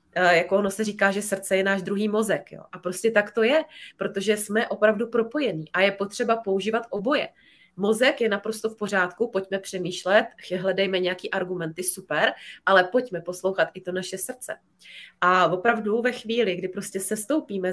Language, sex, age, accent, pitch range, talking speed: Czech, female, 20-39, native, 190-230 Hz, 170 wpm